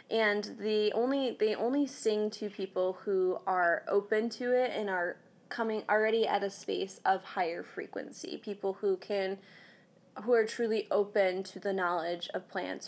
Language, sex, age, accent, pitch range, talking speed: English, female, 20-39, American, 180-210 Hz, 150 wpm